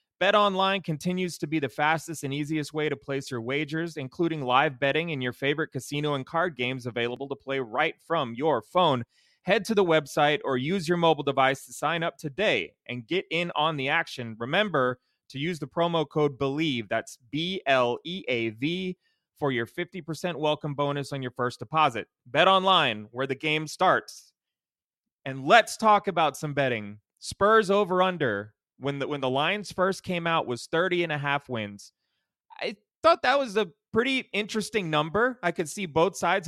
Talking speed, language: 180 wpm, English